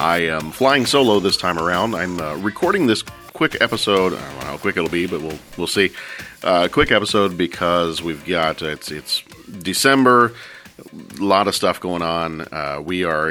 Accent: American